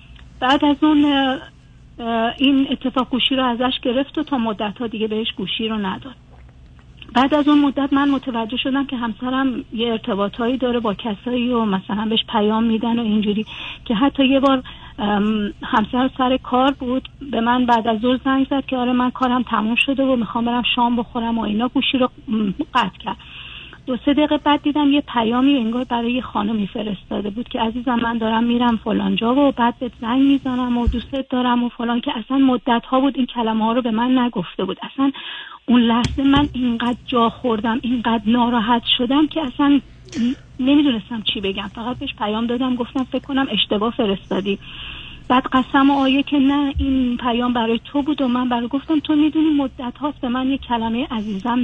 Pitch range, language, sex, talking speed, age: 230-270 Hz, Persian, female, 185 wpm, 40-59